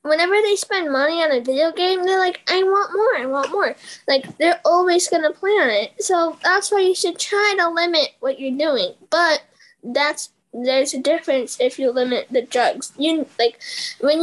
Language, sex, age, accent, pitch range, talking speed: English, female, 10-29, American, 275-360 Hz, 200 wpm